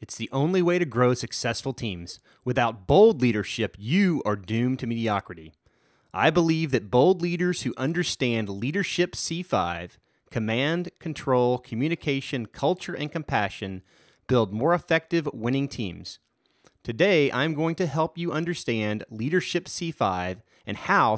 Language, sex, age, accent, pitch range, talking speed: English, male, 30-49, American, 115-160 Hz, 135 wpm